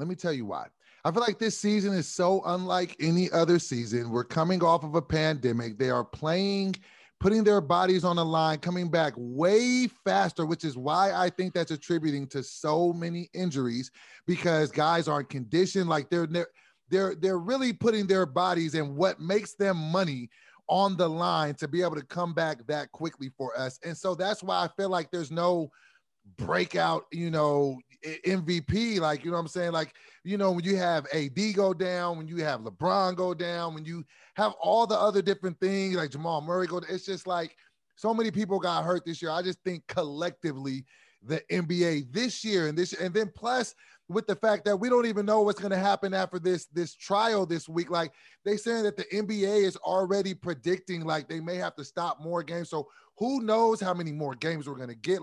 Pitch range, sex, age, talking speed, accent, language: 155-190 Hz, male, 30-49, 210 wpm, American, English